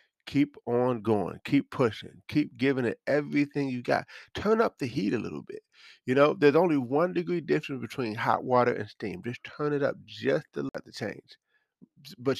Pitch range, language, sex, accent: 115-145 Hz, English, male, American